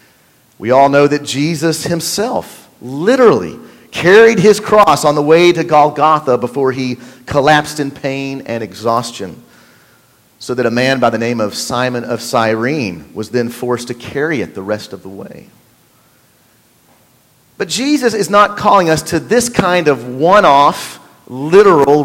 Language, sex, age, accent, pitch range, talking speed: English, male, 40-59, American, 120-165 Hz, 150 wpm